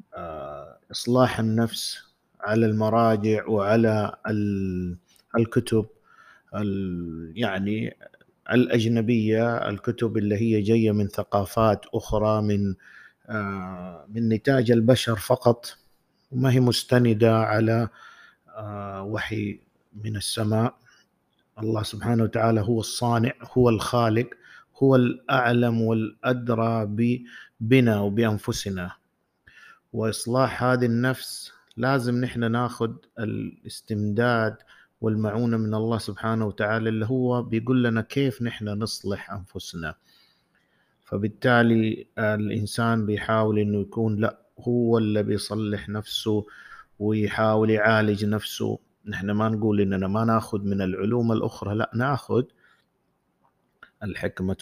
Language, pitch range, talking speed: Arabic, 105-115 Hz, 90 wpm